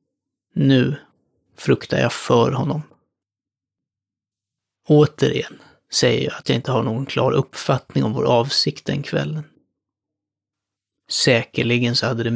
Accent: native